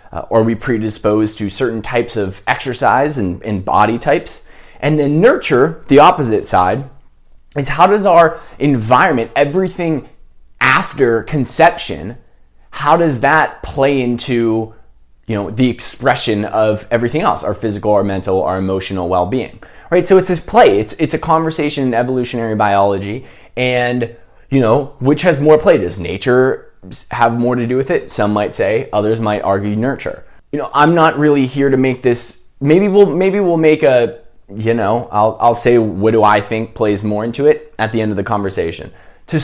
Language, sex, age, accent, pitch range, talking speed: English, male, 20-39, American, 105-145 Hz, 175 wpm